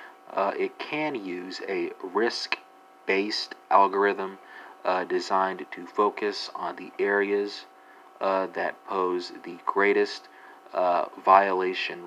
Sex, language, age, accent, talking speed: male, English, 40-59, American, 110 wpm